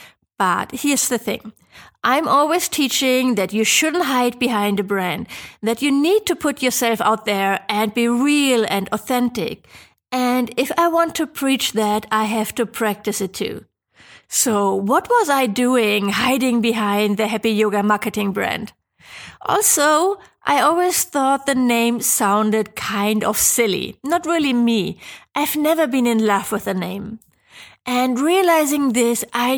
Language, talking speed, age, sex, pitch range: English, 155 wpm, 30-49, female, 210-260 Hz